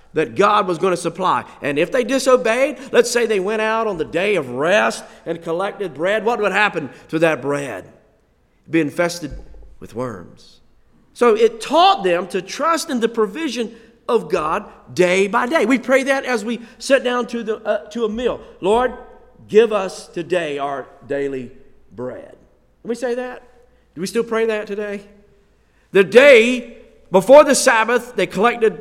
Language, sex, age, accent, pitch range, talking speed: English, male, 50-69, American, 165-235 Hz, 175 wpm